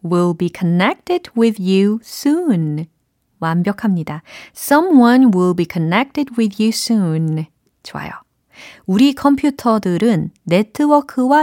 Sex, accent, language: female, native, Korean